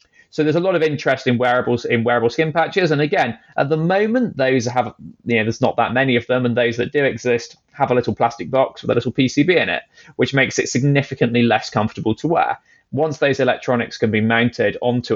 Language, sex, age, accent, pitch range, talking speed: English, male, 20-39, British, 110-130 Hz, 230 wpm